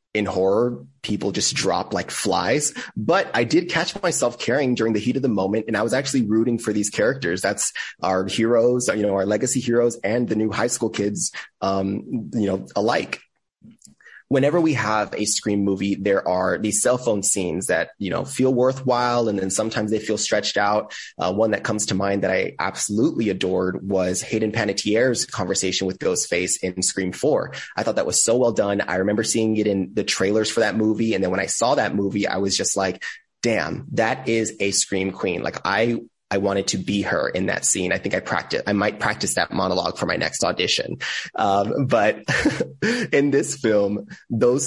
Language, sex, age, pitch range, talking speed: English, male, 20-39, 100-120 Hz, 205 wpm